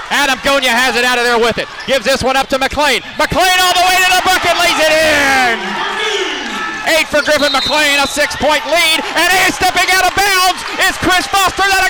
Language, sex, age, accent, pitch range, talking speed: English, male, 30-49, American, 230-325 Hz, 210 wpm